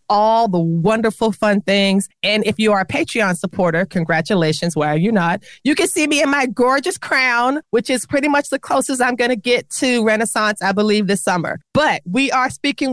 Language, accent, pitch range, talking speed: English, American, 180-245 Hz, 210 wpm